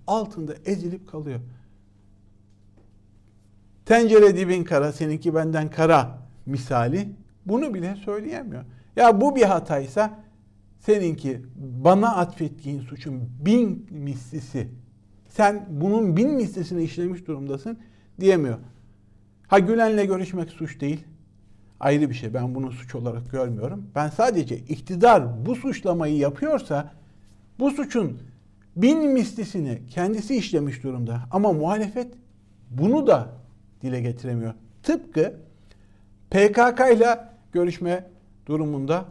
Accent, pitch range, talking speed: native, 120-195 Hz, 105 wpm